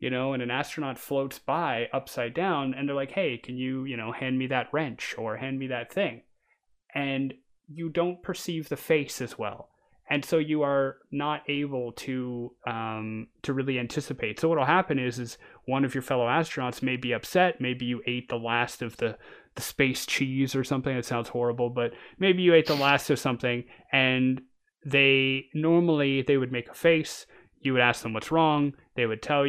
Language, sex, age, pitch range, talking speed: English, male, 20-39, 120-145 Hz, 200 wpm